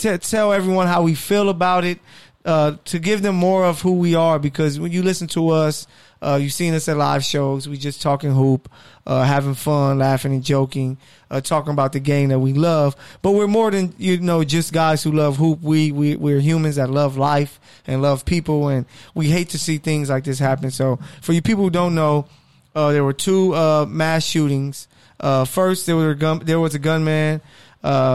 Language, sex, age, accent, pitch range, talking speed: English, male, 20-39, American, 140-160 Hz, 220 wpm